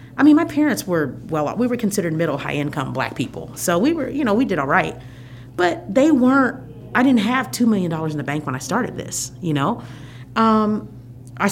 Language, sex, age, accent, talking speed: English, female, 40-59, American, 215 wpm